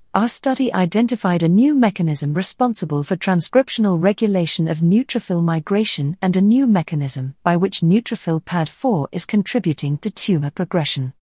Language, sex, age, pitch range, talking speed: English, female, 40-59, 160-220 Hz, 135 wpm